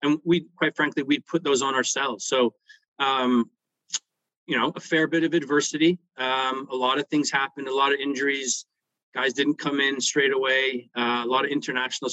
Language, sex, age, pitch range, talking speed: English, male, 30-49, 130-155 Hz, 195 wpm